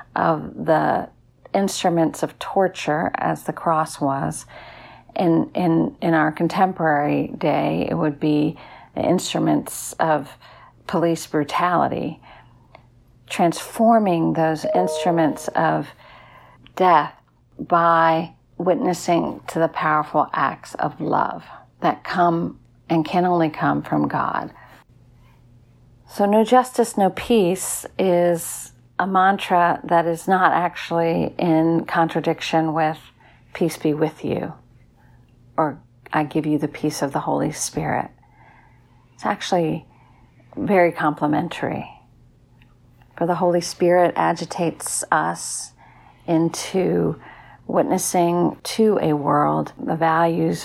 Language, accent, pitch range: English, American, 145-175 Hz